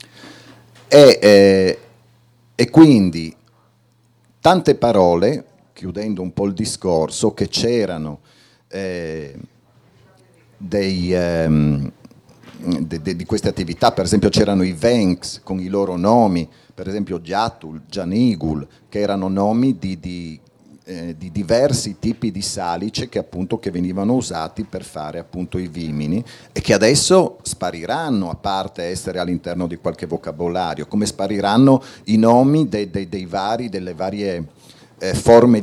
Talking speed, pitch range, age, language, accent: 125 wpm, 90-110 Hz, 40-59, Italian, native